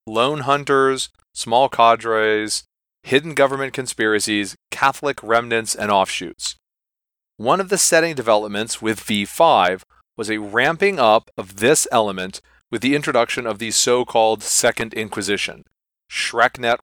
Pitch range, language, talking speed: 110-140 Hz, English, 120 wpm